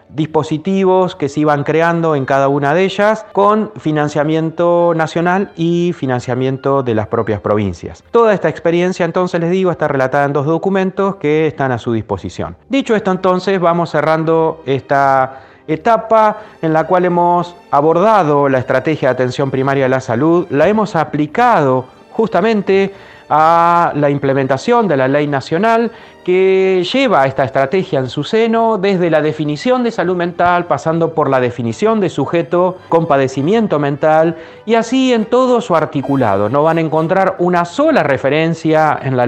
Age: 30-49